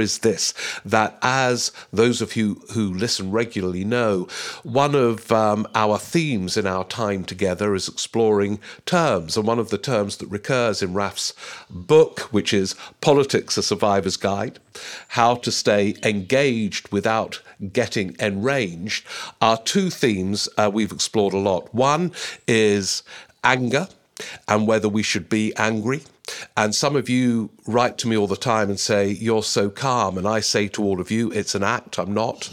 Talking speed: 165 wpm